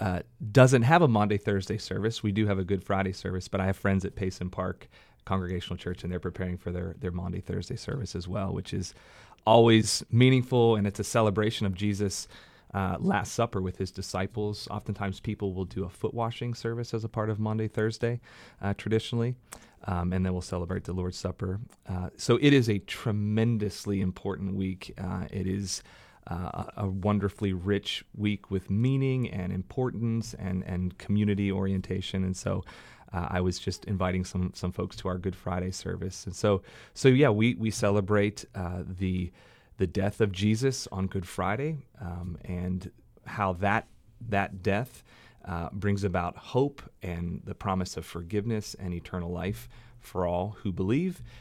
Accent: American